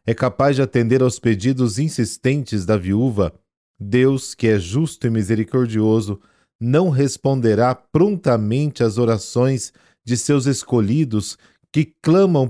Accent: Brazilian